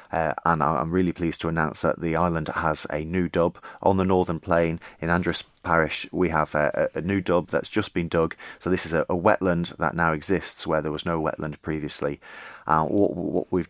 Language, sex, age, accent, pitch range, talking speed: English, male, 30-49, British, 80-90 Hz, 220 wpm